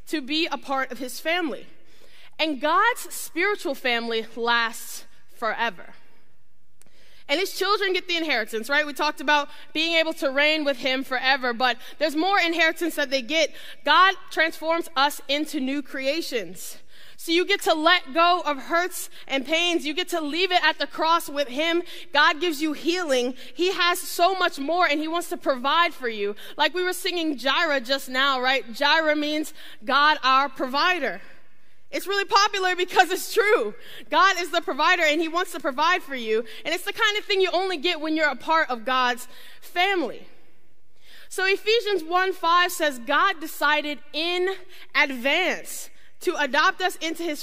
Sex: female